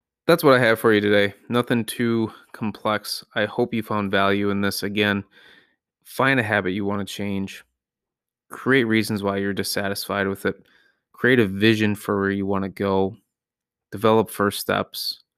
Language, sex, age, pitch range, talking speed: English, male, 20-39, 100-105 Hz, 170 wpm